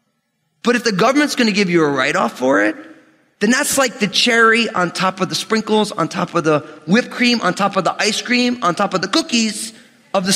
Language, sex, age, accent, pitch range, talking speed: English, male, 30-49, American, 145-230 Hz, 245 wpm